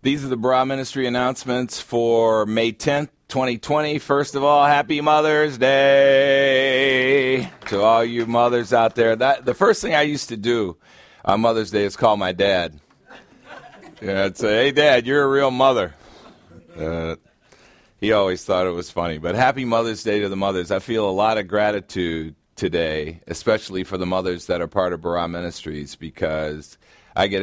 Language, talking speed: English, 175 wpm